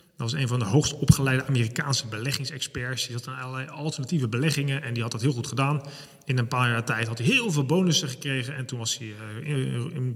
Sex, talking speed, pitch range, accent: male, 230 wpm, 130-165 Hz, Dutch